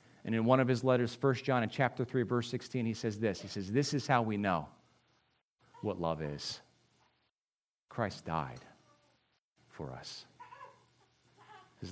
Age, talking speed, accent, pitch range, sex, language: 40-59, 155 wpm, American, 95-130 Hz, male, English